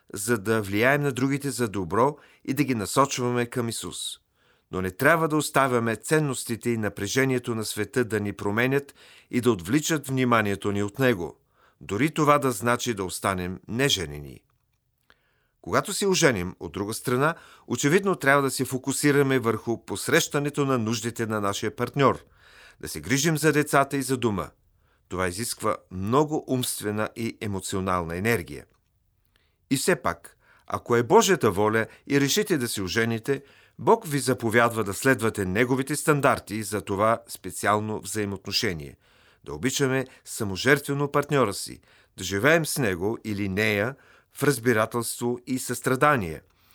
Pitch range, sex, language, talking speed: 100-140 Hz, male, Bulgarian, 140 wpm